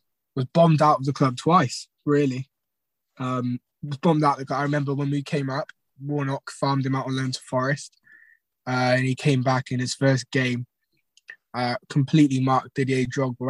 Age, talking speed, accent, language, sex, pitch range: 20-39, 185 wpm, British, English, male, 125-145 Hz